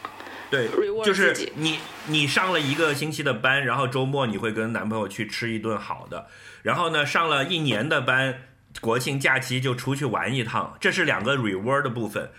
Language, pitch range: Chinese, 110-145 Hz